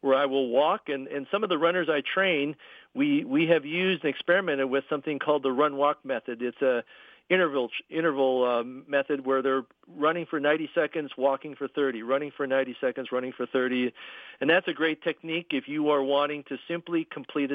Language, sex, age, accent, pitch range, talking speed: English, male, 50-69, American, 130-160 Hz, 210 wpm